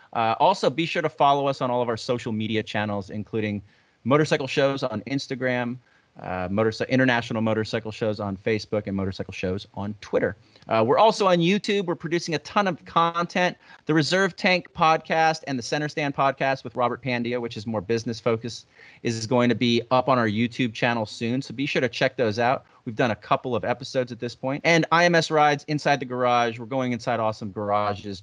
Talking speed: 200 wpm